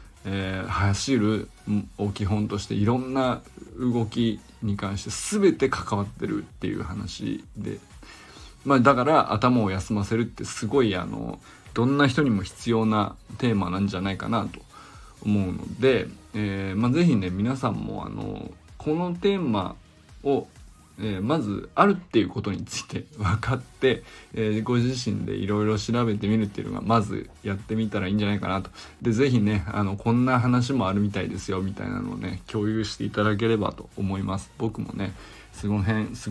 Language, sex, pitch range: Japanese, male, 100-125 Hz